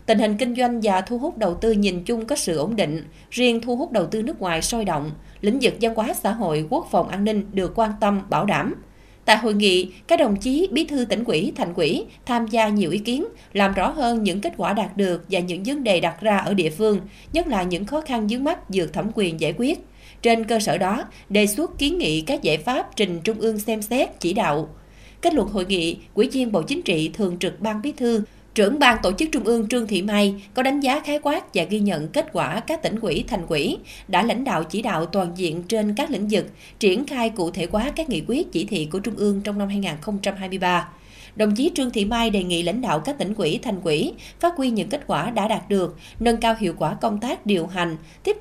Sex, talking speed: female, 245 wpm